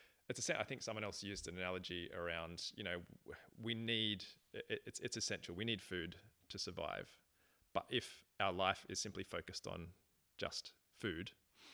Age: 20-39